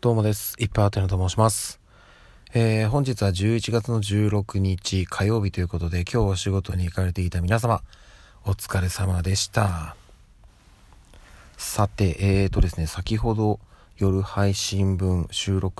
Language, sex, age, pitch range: Japanese, male, 40-59, 80-100 Hz